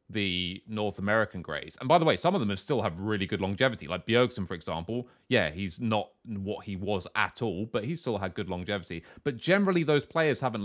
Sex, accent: male, British